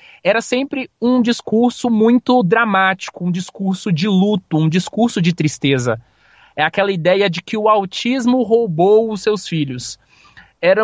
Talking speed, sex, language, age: 145 wpm, male, Portuguese, 20-39